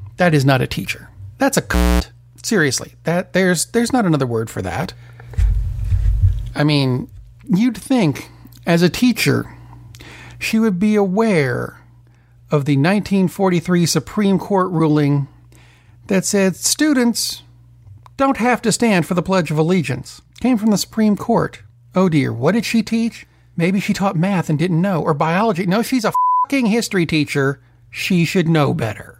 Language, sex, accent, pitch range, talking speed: English, male, American, 120-190 Hz, 155 wpm